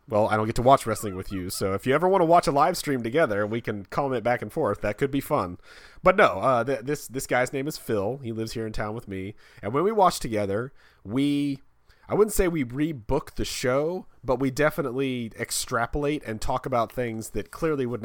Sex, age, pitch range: male, 30-49, 100-135 Hz